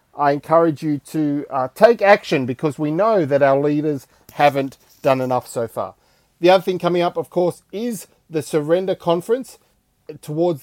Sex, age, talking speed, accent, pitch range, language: male, 40-59, 170 wpm, Australian, 150-190 Hz, English